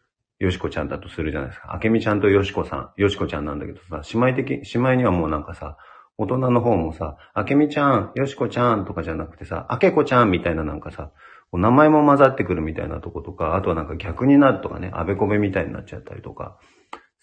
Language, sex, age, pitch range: Japanese, male, 40-59, 80-115 Hz